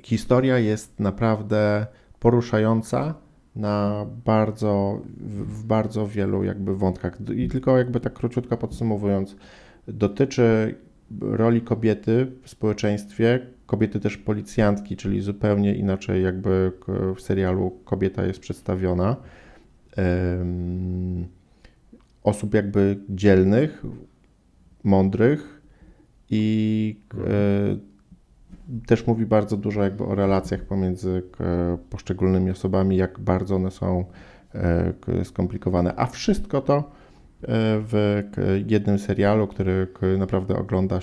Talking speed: 95 wpm